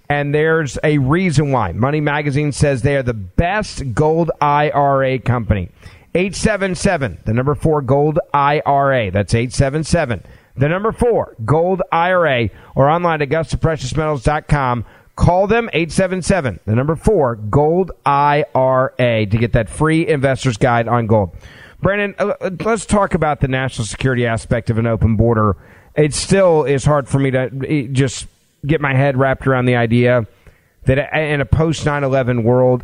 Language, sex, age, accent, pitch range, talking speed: English, male, 40-59, American, 120-150 Hz, 150 wpm